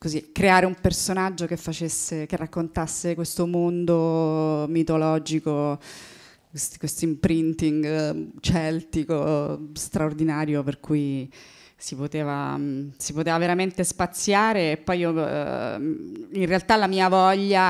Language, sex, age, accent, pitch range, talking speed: Italian, female, 20-39, native, 155-185 Hz, 90 wpm